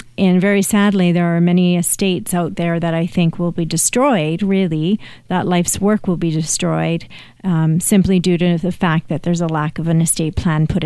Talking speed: 205 wpm